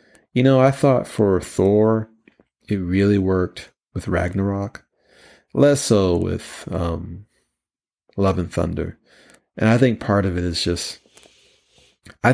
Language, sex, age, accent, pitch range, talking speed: English, male, 30-49, American, 90-110 Hz, 130 wpm